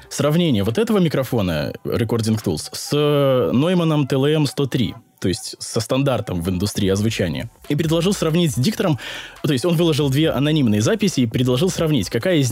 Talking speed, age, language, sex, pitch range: 160 wpm, 20-39, Russian, male, 105-145 Hz